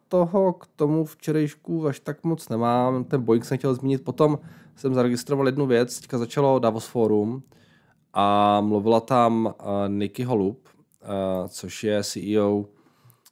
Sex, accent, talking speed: male, native, 135 wpm